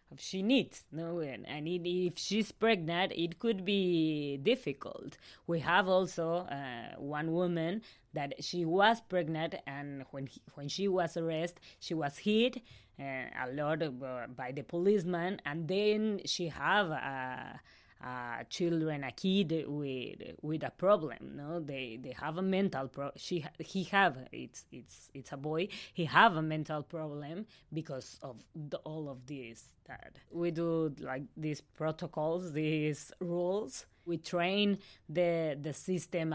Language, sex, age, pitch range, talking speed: French, female, 20-39, 145-185 Hz, 155 wpm